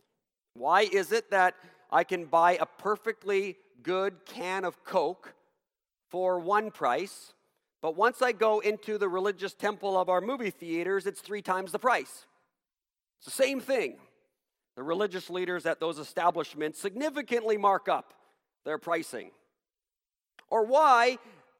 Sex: male